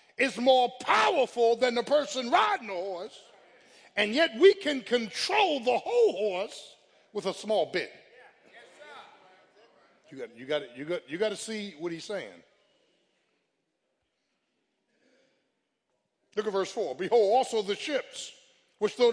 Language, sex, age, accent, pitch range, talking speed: English, male, 50-69, American, 220-310 Hz, 140 wpm